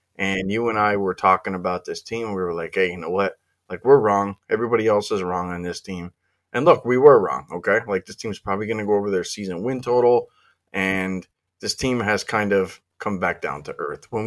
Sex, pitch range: male, 95-115 Hz